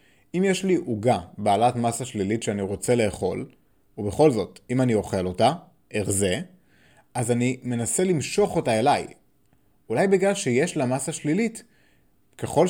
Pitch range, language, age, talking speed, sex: 110-165 Hz, Hebrew, 20-39, 140 wpm, male